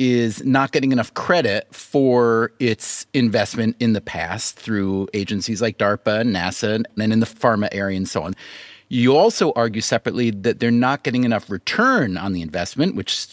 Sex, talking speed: male, 175 wpm